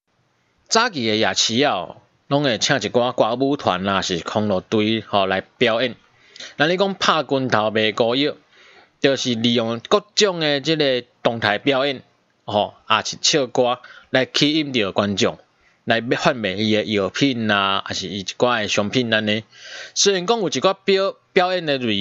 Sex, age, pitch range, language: male, 20-39, 110-145 Hz, Chinese